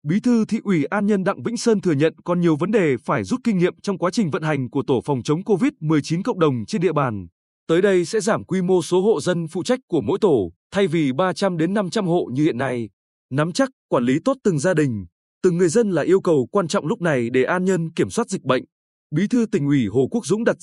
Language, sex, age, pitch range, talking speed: Vietnamese, male, 20-39, 150-200 Hz, 260 wpm